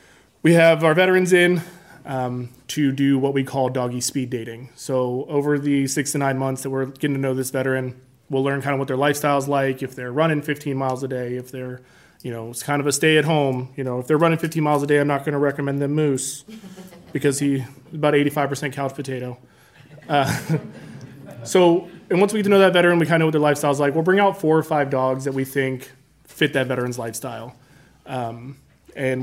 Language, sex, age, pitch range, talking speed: English, male, 20-39, 130-155 Hz, 230 wpm